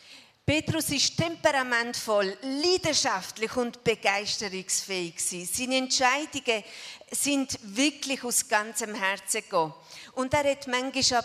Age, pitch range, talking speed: 40-59, 205-260 Hz, 95 wpm